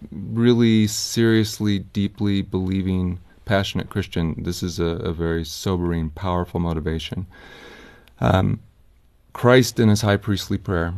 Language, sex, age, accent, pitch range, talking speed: English, male, 40-59, American, 85-105 Hz, 115 wpm